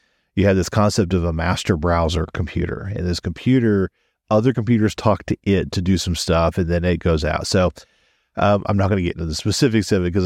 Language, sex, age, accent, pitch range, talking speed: English, male, 40-59, American, 85-105 Hz, 230 wpm